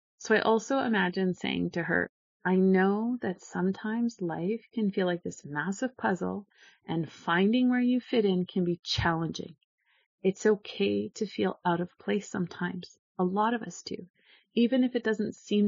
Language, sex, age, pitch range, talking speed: English, female, 30-49, 180-220 Hz, 170 wpm